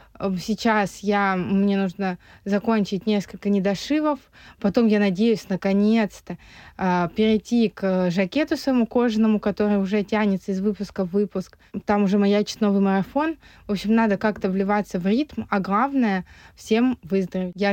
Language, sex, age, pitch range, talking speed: Russian, female, 20-39, 195-235 Hz, 140 wpm